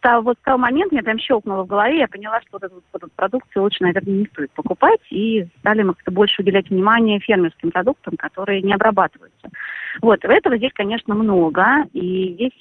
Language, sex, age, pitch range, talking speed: Russian, female, 30-49, 185-245 Hz, 195 wpm